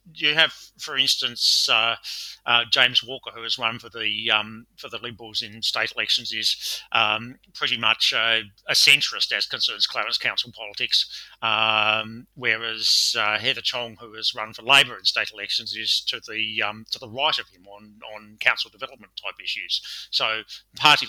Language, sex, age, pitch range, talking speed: English, male, 30-49, 105-120 Hz, 175 wpm